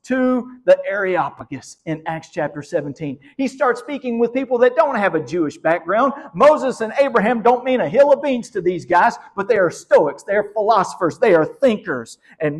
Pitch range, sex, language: 150-245 Hz, male, English